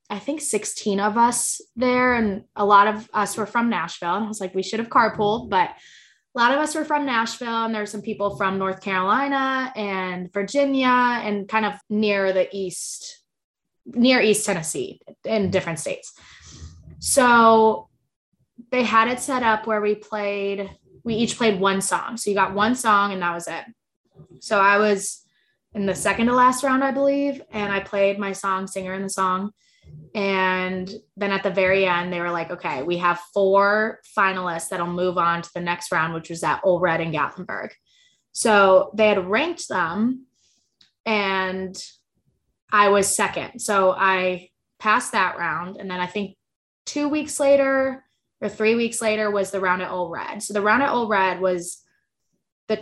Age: 20-39